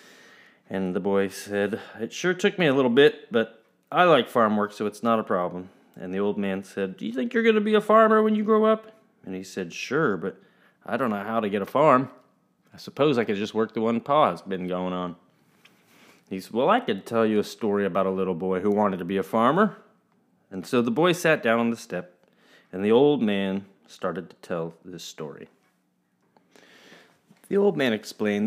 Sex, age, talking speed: male, 30-49, 220 wpm